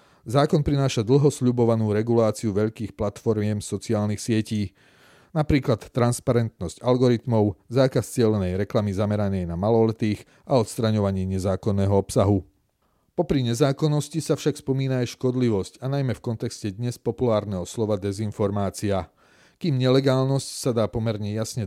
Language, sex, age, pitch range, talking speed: Slovak, male, 40-59, 100-125 Hz, 115 wpm